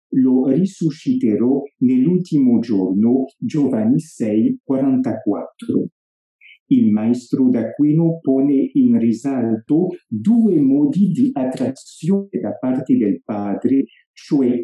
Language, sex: English, male